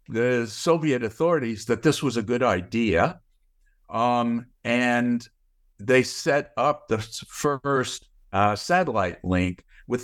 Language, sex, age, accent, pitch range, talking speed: English, male, 60-79, American, 105-135 Hz, 120 wpm